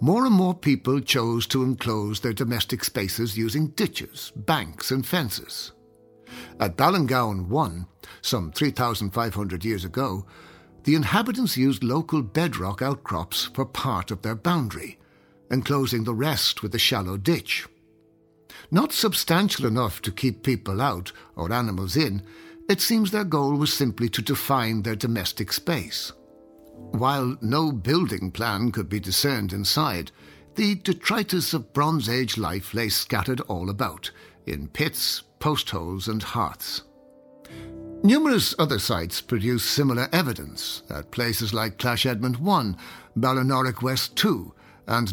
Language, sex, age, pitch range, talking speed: English, male, 60-79, 105-150 Hz, 135 wpm